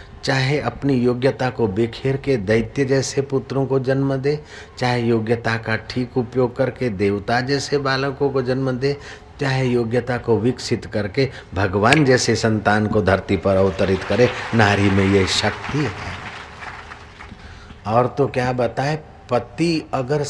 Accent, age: native, 50-69